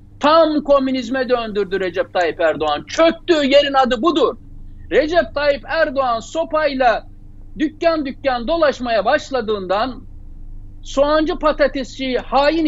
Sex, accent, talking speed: male, native, 100 wpm